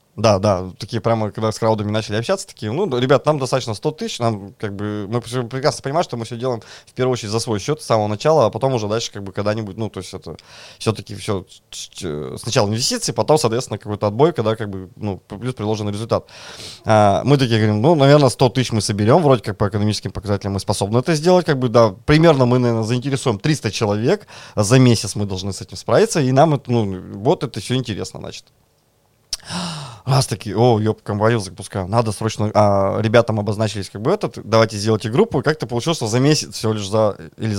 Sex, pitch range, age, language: male, 105-125 Hz, 20-39, Russian